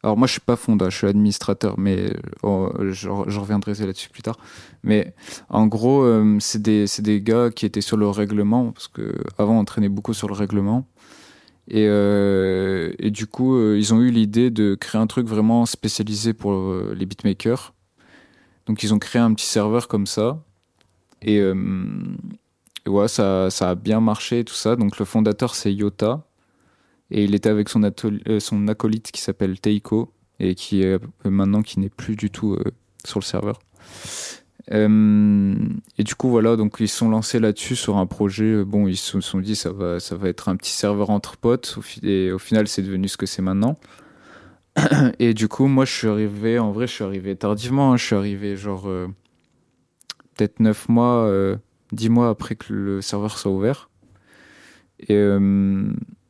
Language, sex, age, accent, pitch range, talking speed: French, male, 20-39, French, 100-115 Hz, 200 wpm